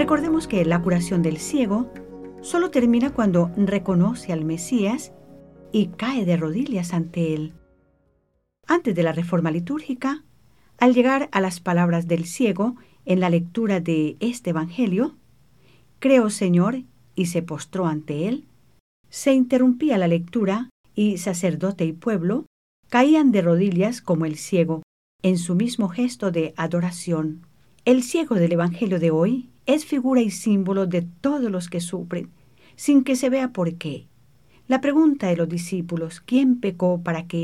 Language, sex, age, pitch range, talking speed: English, female, 50-69, 170-245 Hz, 150 wpm